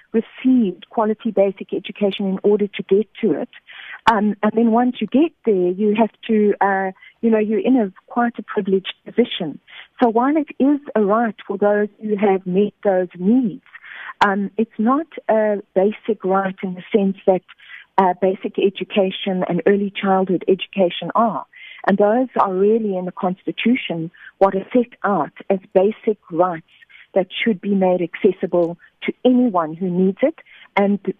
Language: English